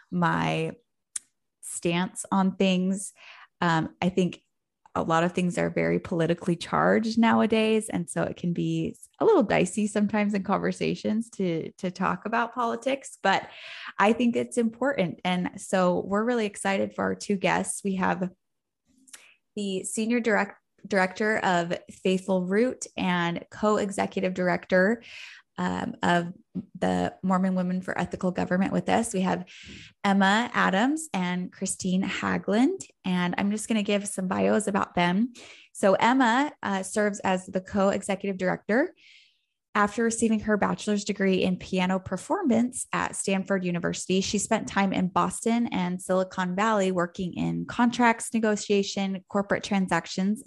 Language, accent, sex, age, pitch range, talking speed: English, American, female, 20-39, 180-220 Hz, 140 wpm